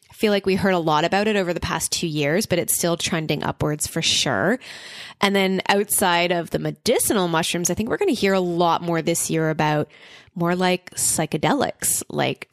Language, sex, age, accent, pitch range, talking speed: English, female, 20-39, American, 160-185 Hz, 205 wpm